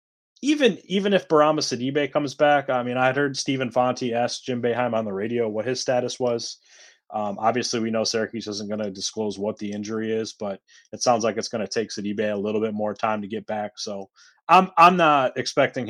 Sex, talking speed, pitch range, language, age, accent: male, 220 wpm, 105-130 Hz, English, 30-49, American